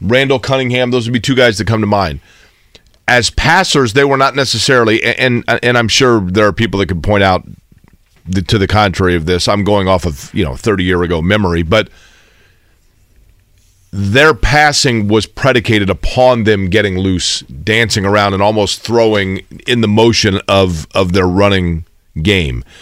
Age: 40-59